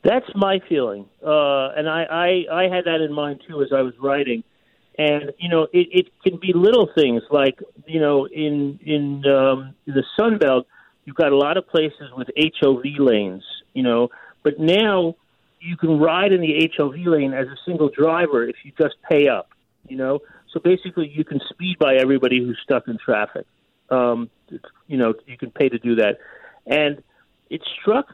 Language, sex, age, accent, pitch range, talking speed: English, male, 40-59, American, 130-160 Hz, 190 wpm